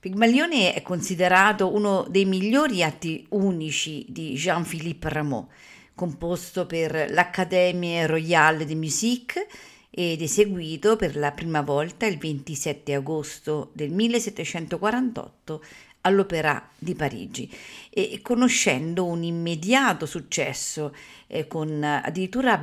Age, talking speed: 50-69, 105 wpm